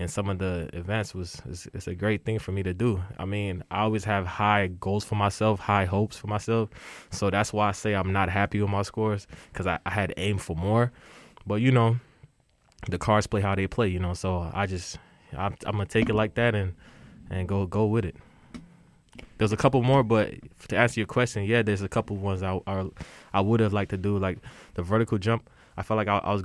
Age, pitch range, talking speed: 20-39, 95-110 Hz, 240 wpm